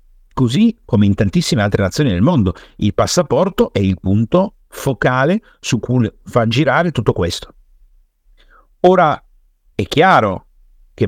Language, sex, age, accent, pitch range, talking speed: Italian, male, 50-69, native, 95-125 Hz, 130 wpm